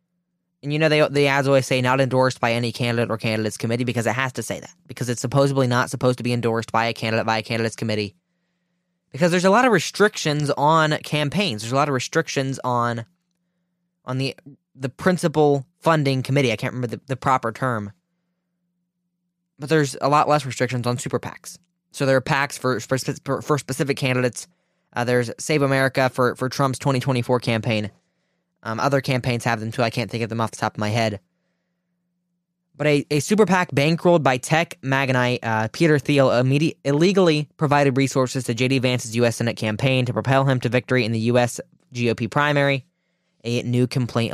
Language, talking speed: English, 190 wpm